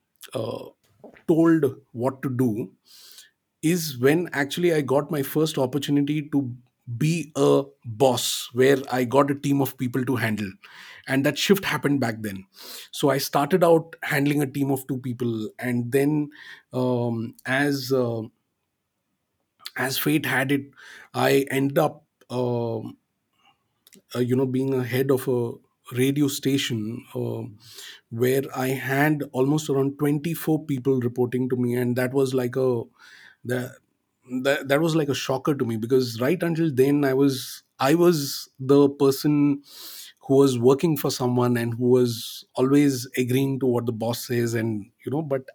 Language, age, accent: English, 40-59, Indian